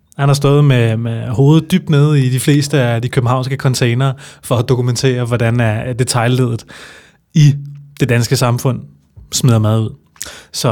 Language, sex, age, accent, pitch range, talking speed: Danish, male, 20-39, native, 115-140 Hz, 160 wpm